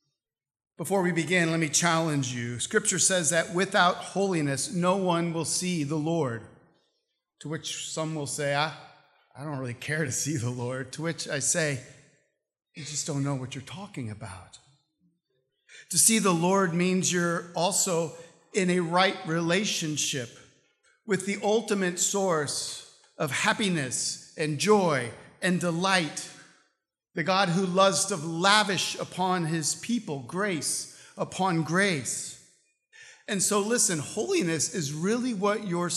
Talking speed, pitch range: 140 wpm, 135-180 Hz